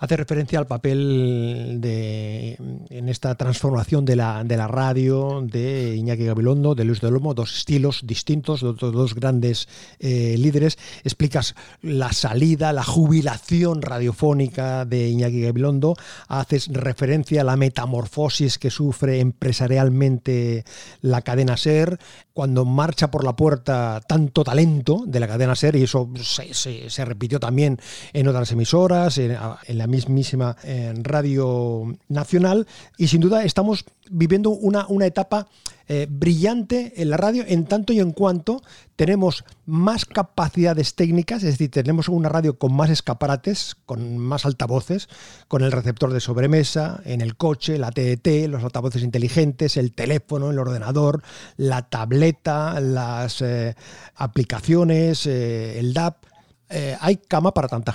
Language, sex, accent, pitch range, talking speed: Spanish, male, Spanish, 125-155 Hz, 140 wpm